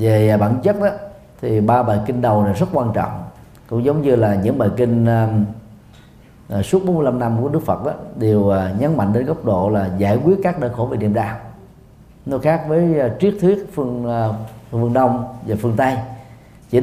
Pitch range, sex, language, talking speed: 105-140 Hz, male, Vietnamese, 205 wpm